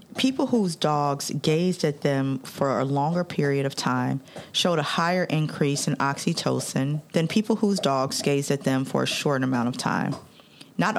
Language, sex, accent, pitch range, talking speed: English, female, American, 140-180 Hz, 175 wpm